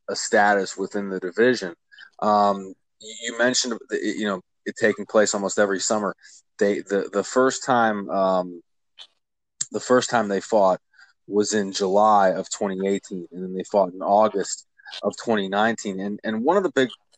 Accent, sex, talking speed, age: American, male, 165 wpm, 20-39